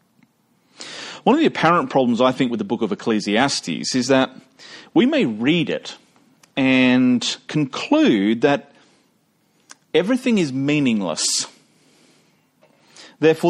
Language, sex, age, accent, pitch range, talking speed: English, male, 40-59, Australian, 140-215 Hz, 110 wpm